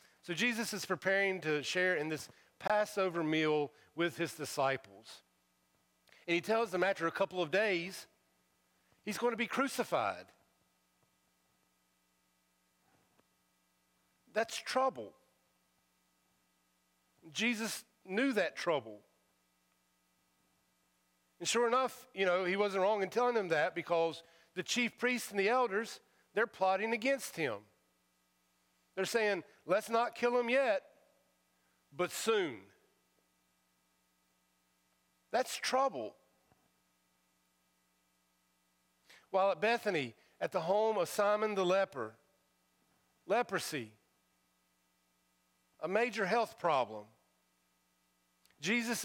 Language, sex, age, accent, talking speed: English, male, 50-69, American, 100 wpm